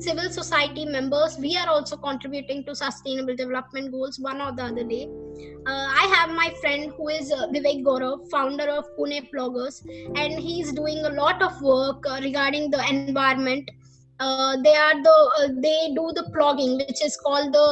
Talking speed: 185 wpm